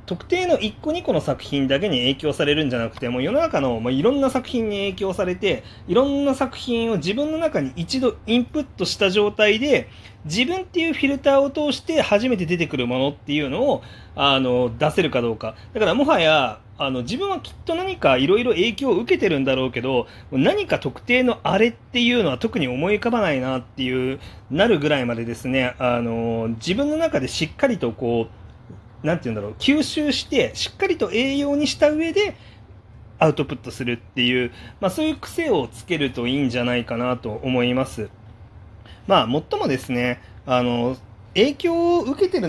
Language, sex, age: Japanese, male, 30-49